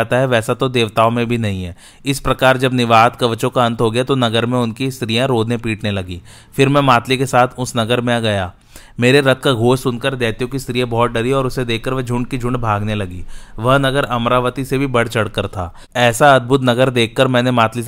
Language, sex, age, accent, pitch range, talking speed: Hindi, male, 30-49, native, 115-130 Hz, 45 wpm